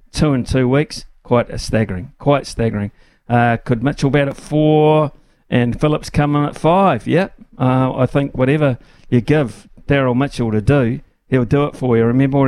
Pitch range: 115-140 Hz